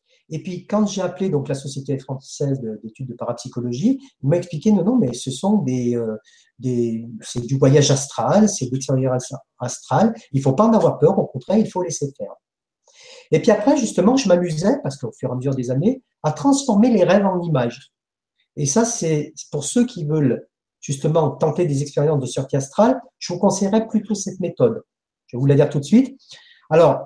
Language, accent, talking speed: French, French, 205 wpm